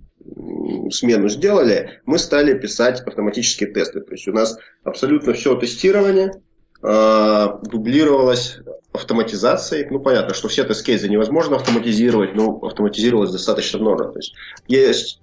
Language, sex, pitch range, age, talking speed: English, male, 105-145 Hz, 30-49, 120 wpm